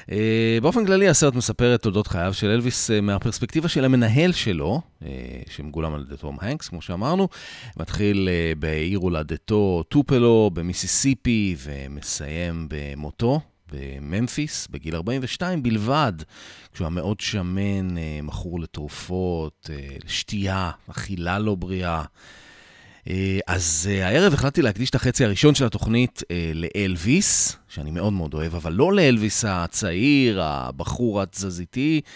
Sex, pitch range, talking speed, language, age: male, 80-115 Hz, 120 wpm, Hebrew, 30-49